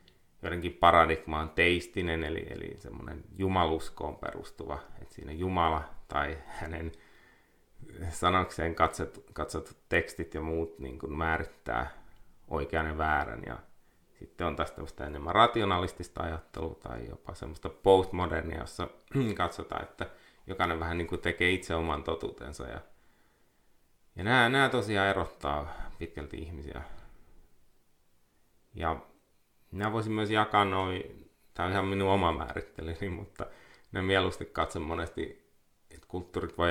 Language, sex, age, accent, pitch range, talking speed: Finnish, male, 30-49, native, 80-95 Hz, 120 wpm